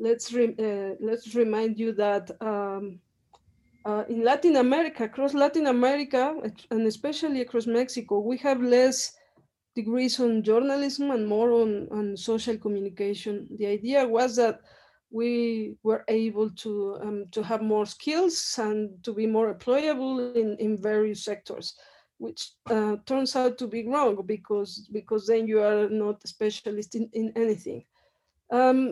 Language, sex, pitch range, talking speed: English, female, 215-260 Hz, 150 wpm